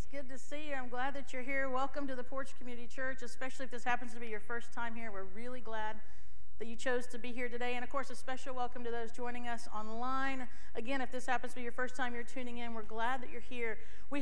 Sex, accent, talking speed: female, American, 275 wpm